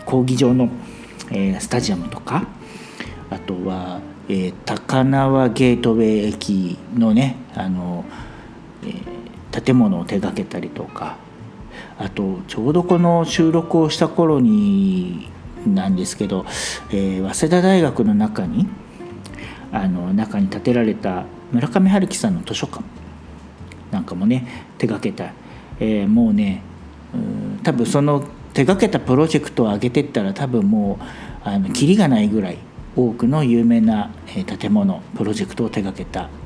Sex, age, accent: male, 50-69, native